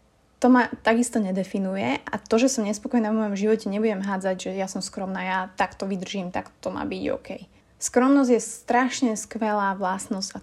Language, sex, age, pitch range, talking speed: Slovak, female, 20-39, 190-230 Hz, 185 wpm